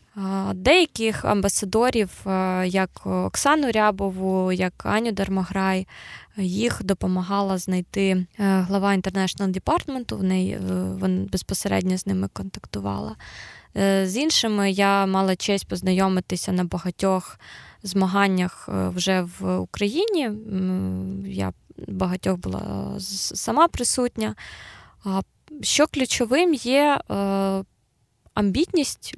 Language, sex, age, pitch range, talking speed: Ukrainian, female, 20-39, 185-210 Hz, 80 wpm